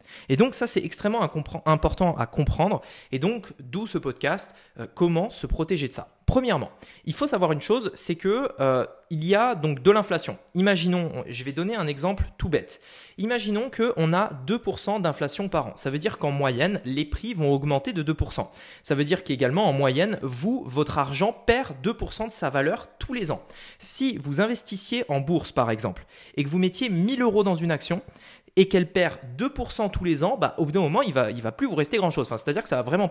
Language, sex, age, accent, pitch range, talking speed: French, male, 20-39, French, 140-205 Hz, 215 wpm